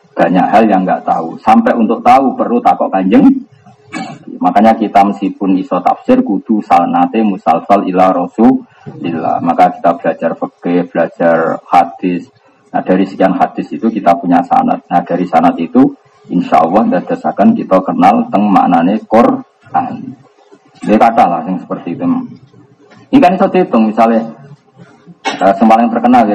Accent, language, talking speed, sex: native, Indonesian, 145 wpm, male